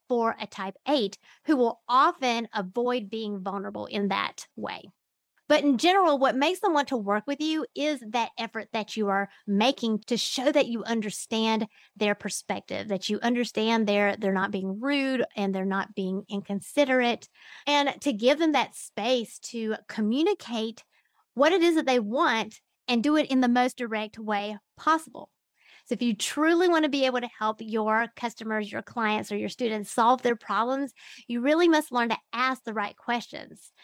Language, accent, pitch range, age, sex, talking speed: English, American, 220-275 Hz, 30-49, female, 185 wpm